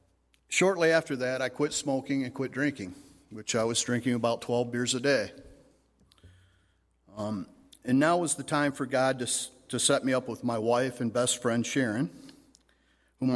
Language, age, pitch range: English, 40-59, 115-145 Hz